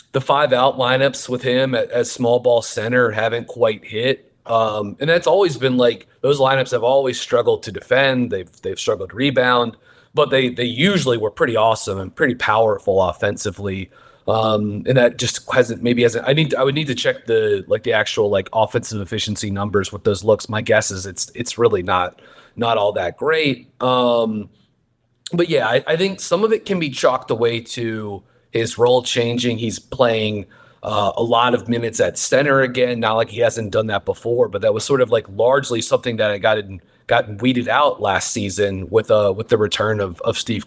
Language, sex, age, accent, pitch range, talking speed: English, male, 30-49, American, 110-135 Hz, 195 wpm